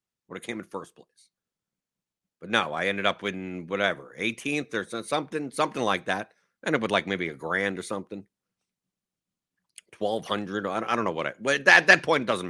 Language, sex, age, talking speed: English, male, 50-69, 180 wpm